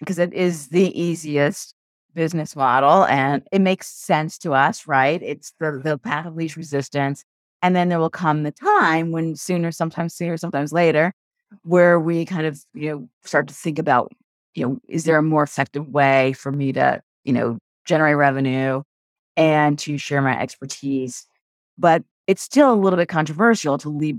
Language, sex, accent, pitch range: English, female, American, 140-170 Hz